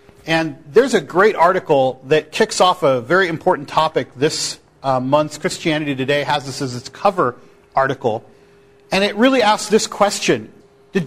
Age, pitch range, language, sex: 40-59, 145-195 Hz, English, male